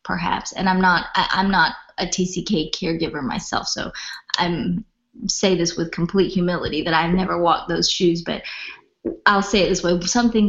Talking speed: 170 wpm